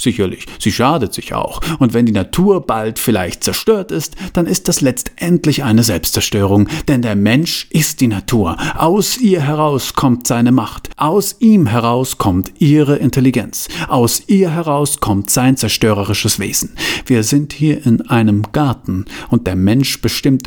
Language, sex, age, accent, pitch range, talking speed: German, male, 40-59, German, 105-150 Hz, 160 wpm